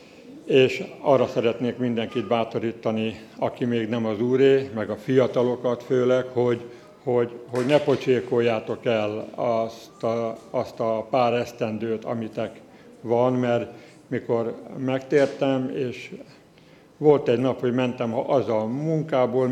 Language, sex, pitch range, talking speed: Hungarian, male, 115-135 Hz, 125 wpm